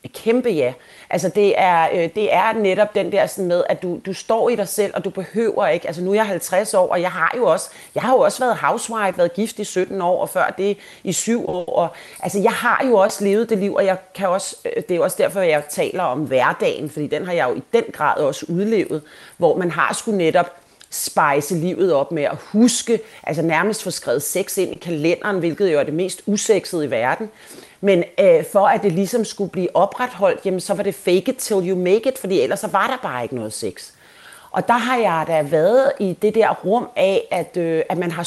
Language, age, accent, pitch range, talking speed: Danish, 40-59, native, 180-225 Hz, 240 wpm